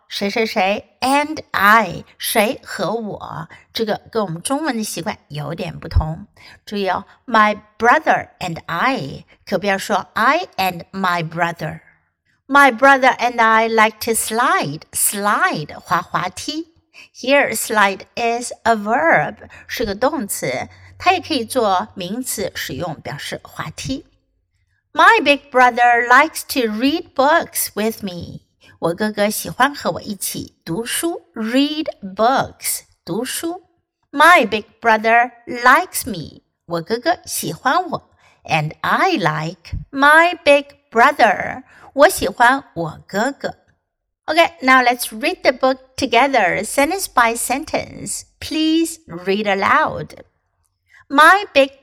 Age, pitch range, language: 60-79, 200-285 Hz, Chinese